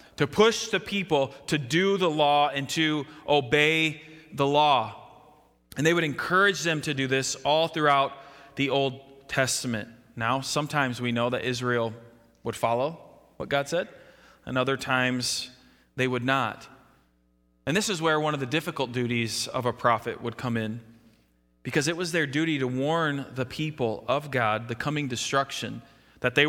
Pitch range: 120-155 Hz